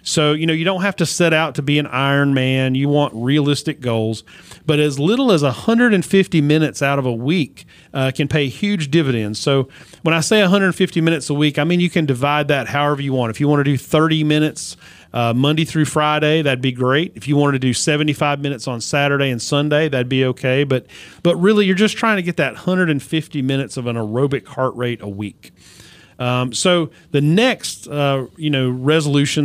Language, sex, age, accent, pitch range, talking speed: English, male, 40-59, American, 125-155 Hz, 210 wpm